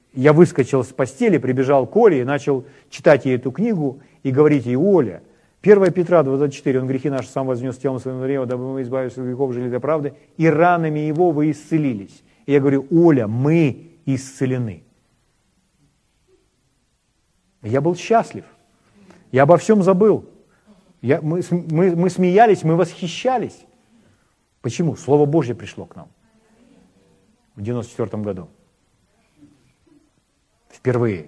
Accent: native